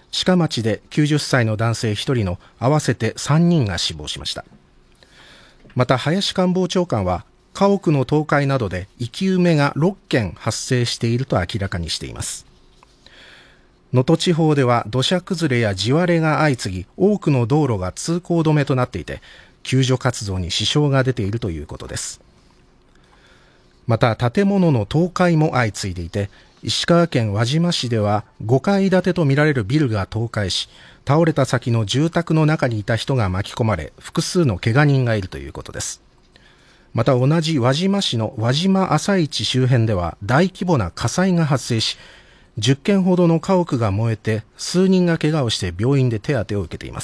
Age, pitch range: 40-59, 110-160 Hz